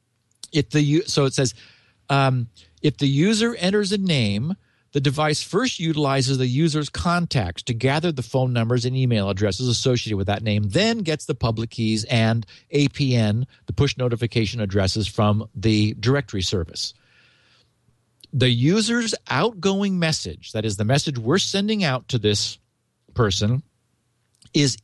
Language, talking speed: English, 145 wpm